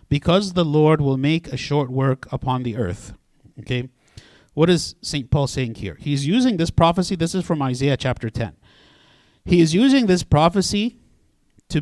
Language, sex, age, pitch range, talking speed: English, male, 50-69, 130-175 Hz, 175 wpm